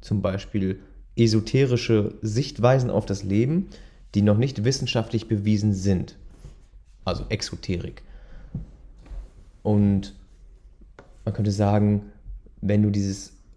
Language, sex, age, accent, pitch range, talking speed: German, male, 30-49, German, 100-115 Hz, 95 wpm